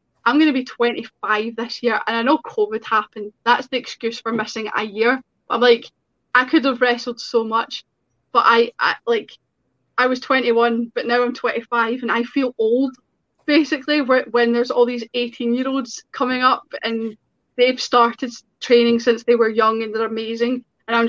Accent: British